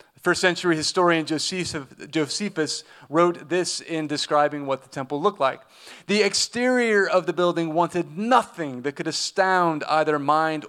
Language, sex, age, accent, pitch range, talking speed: English, male, 30-49, American, 150-195 Hz, 140 wpm